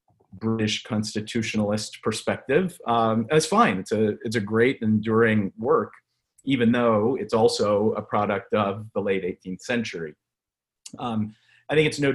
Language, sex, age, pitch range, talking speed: English, male, 40-59, 105-120 Hz, 145 wpm